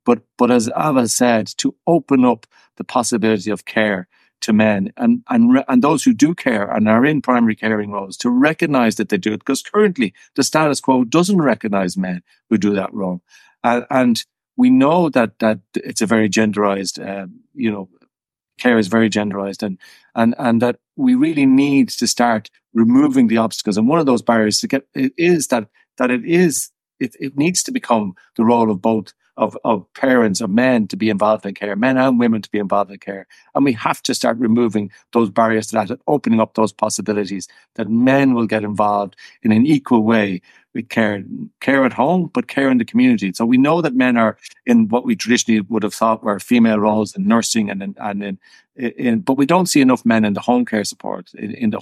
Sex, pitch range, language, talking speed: male, 105-140 Hz, English, 215 wpm